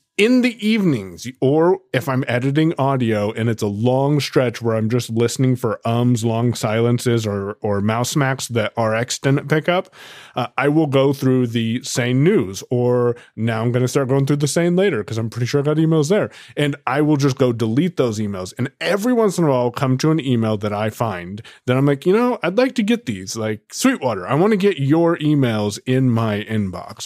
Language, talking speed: English, 220 wpm